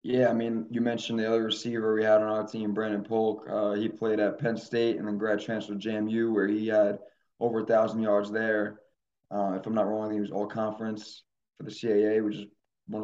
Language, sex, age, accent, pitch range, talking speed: English, male, 20-39, American, 105-115 Hz, 225 wpm